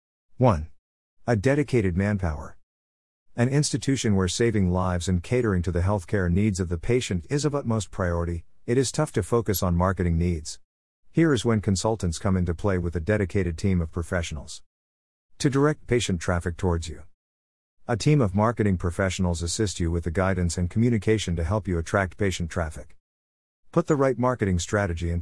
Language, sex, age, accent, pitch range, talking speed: English, male, 50-69, American, 85-110 Hz, 175 wpm